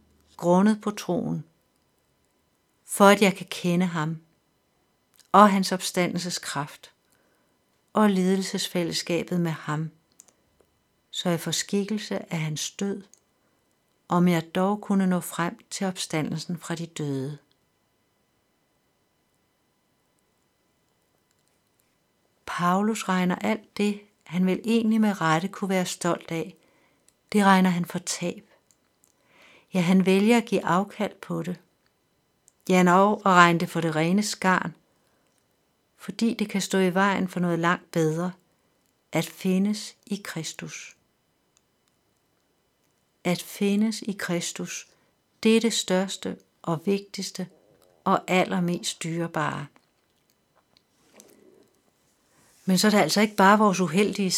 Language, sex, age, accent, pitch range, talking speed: Danish, female, 60-79, native, 170-200 Hz, 115 wpm